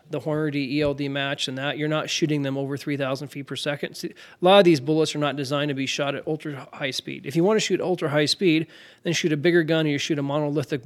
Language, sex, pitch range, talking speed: English, male, 140-160 Hz, 270 wpm